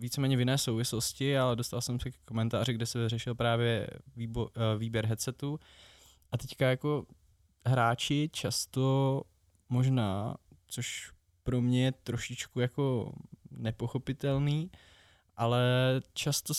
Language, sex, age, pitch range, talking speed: Czech, male, 20-39, 110-130 Hz, 115 wpm